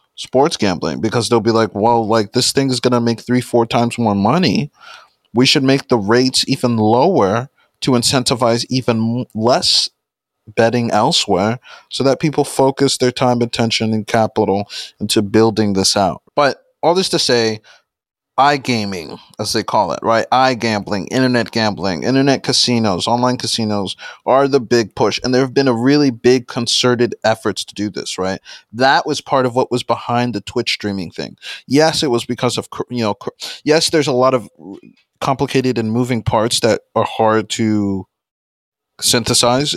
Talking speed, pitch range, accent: 170 wpm, 110-130 Hz, American